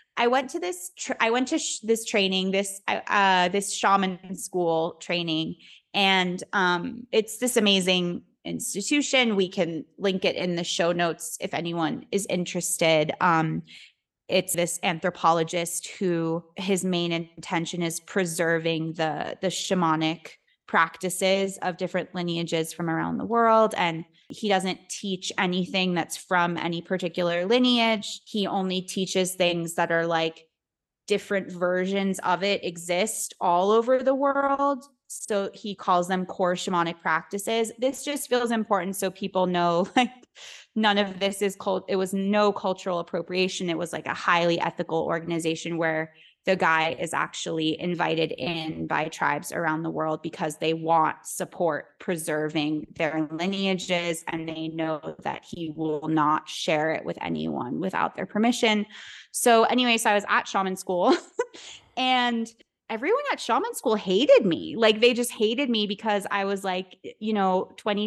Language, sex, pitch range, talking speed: English, female, 170-210 Hz, 155 wpm